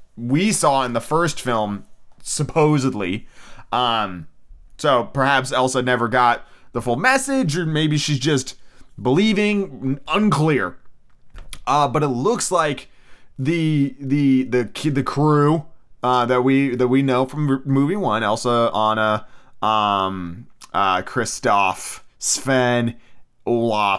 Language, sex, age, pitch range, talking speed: English, male, 20-39, 125-185 Hz, 125 wpm